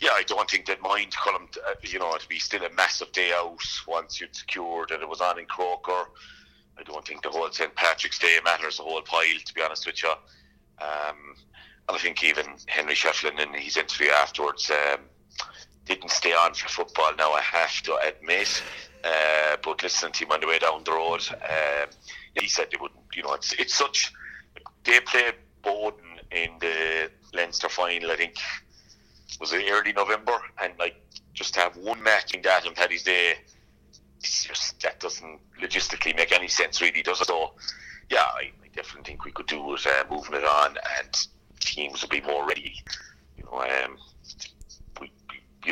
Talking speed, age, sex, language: 190 wpm, 30-49, male, English